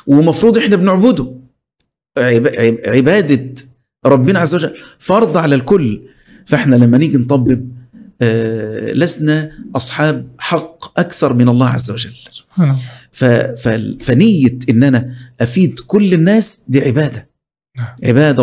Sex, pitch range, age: male, 125-165 Hz, 50-69